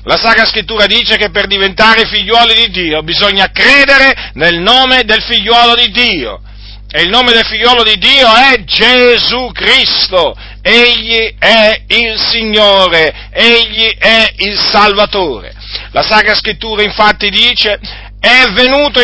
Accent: native